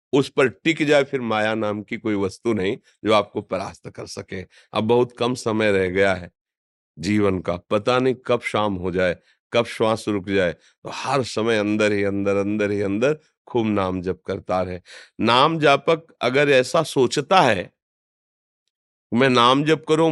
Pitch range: 100-130 Hz